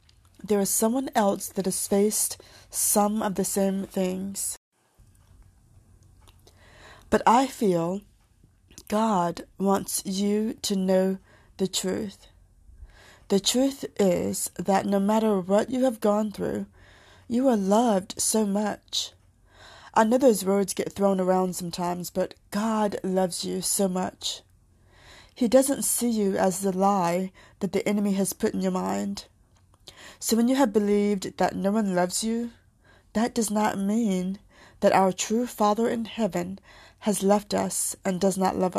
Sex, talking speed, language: female, 145 wpm, English